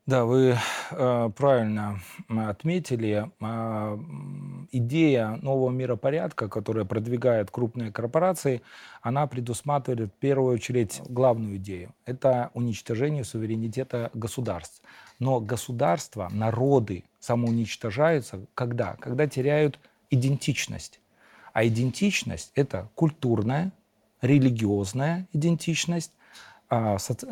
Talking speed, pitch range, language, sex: 80 wpm, 110-135 Hz, Russian, male